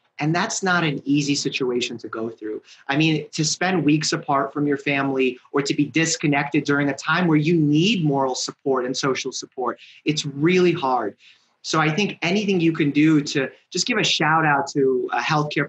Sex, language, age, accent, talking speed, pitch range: male, English, 30-49, American, 200 wpm, 140-180 Hz